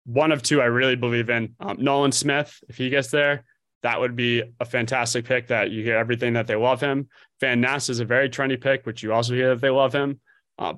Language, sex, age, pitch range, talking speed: English, male, 20-39, 110-130 Hz, 245 wpm